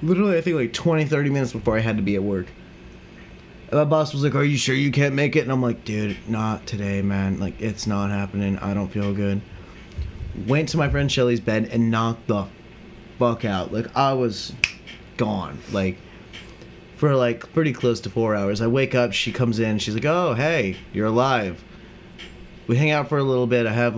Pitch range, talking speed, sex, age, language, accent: 100-125 Hz, 215 wpm, male, 20-39, English, American